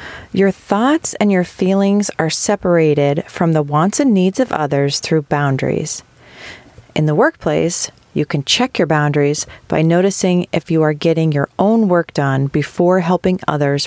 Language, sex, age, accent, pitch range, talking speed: English, female, 40-59, American, 145-185 Hz, 160 wpm